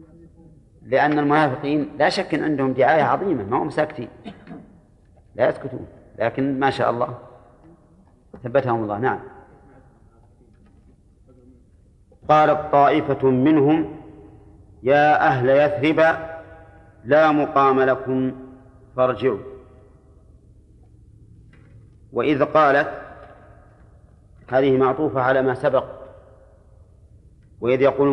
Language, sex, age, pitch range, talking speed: Arabic, male, 40-59, 110-145 Hz, 85 wpm